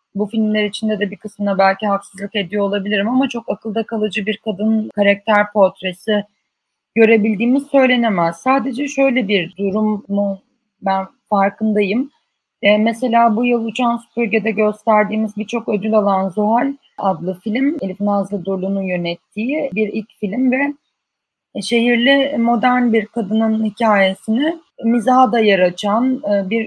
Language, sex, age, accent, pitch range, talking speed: Turkish, female, 30-49, native, 205-235 Hz, 130 wpm